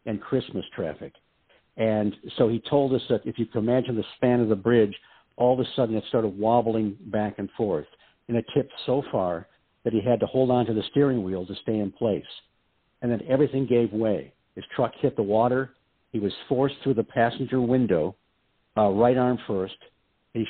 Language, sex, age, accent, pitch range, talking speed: English, male, 60-79, American, 105-130 Hz, 200 wpm